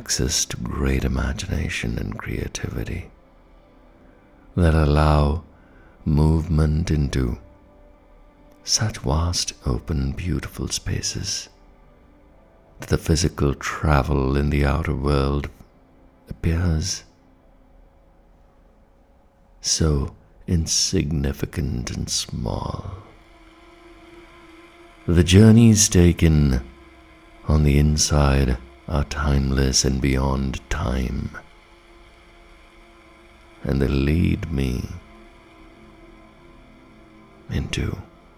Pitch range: 70-90 Hz